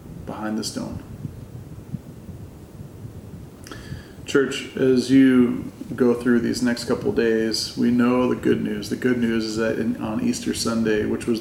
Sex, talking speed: male, 145 wpm